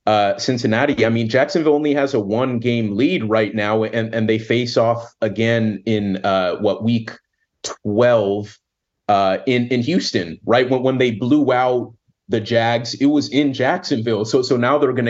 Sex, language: male, English